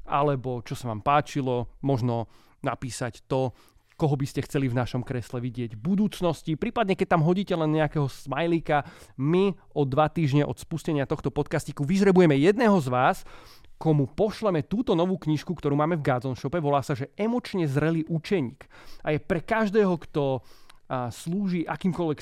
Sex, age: male, 30-49